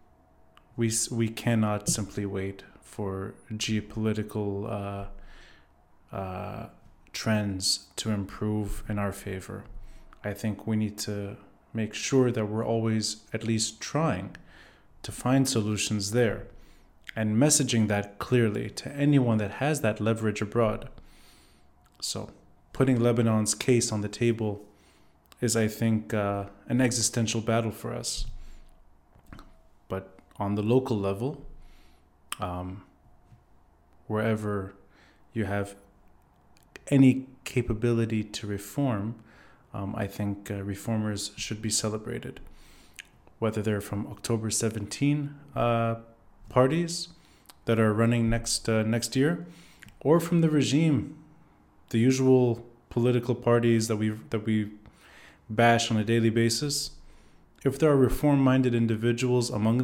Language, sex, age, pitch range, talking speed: English, male, 20-39, 100-120 Hz, 115 wpm